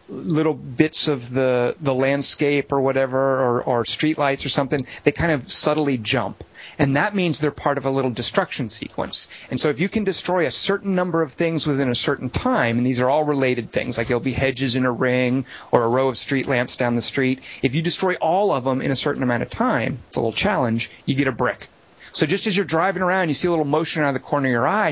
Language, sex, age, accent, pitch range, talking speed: English, male, 30-49, American, 125-165 Hz, 250 wpm